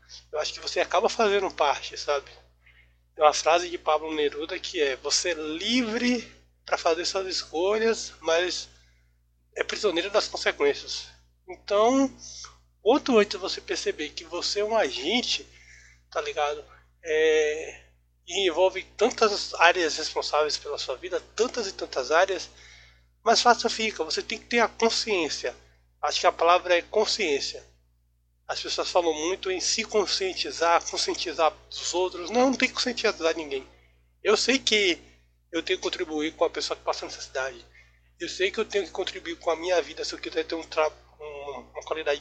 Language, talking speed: Portuguese, 165 wpm